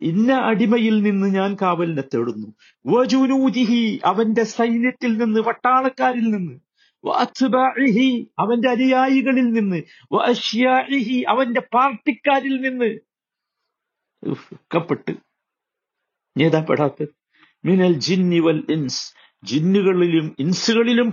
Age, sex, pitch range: 50-69, male, 185-245 Hz